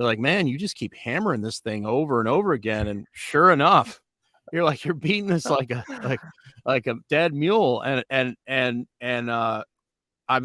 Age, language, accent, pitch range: 40-59, English, American, 115-140 Hz